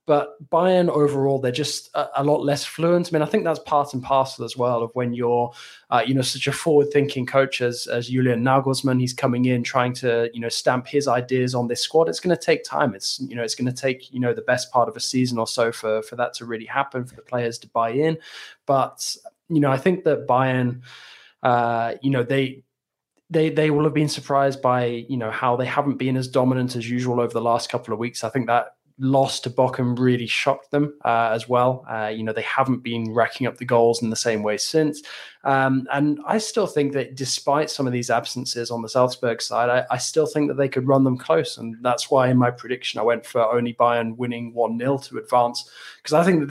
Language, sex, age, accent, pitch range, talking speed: English, male, 20-39, British, 120-140 Hz, 240 wpm